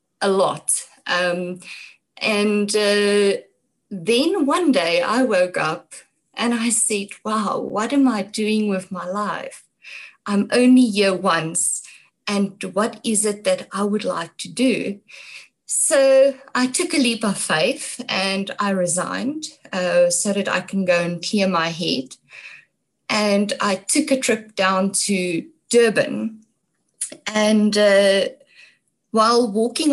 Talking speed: 135 wpm